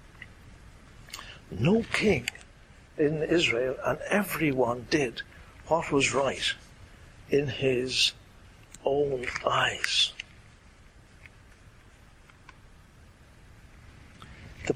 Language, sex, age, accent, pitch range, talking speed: English, male, 60-79, British, 105-175 Hz, 60 wpm